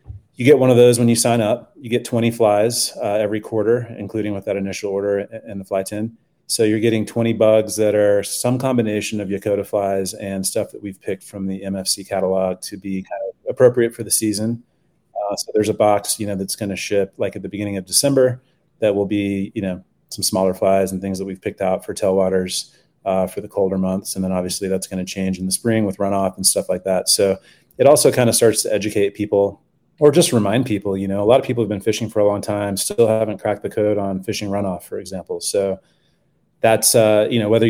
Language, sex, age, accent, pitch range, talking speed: English, male, 30-49, American, 95-115 Hz, 235 wpm